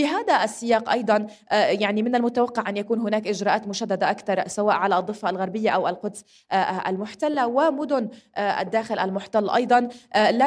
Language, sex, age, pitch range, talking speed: Arabic, female, 20-39, 200-240 Hz, 145 wpm